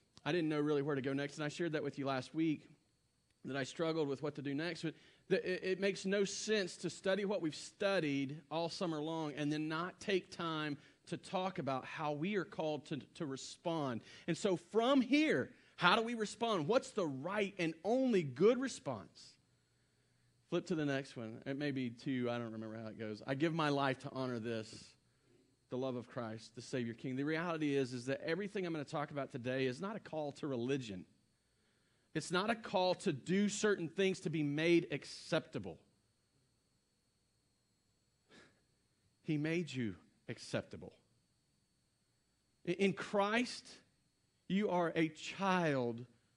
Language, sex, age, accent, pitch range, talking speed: English, male, 40-59, American, 135-185 Hz, 175 wpm